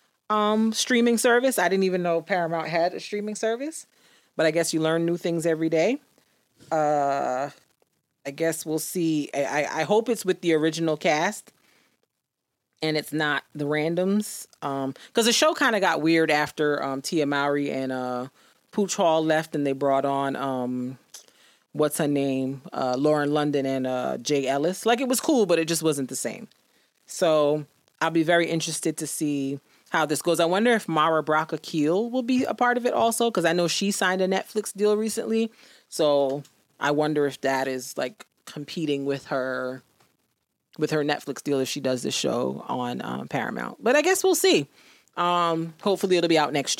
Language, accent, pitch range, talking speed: English, American, 150-195 Hz, 185 wpm